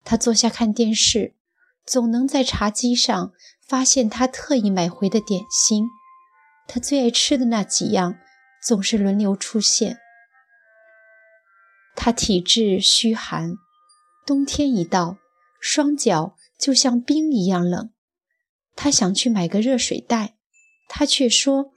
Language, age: Chinese, 30-49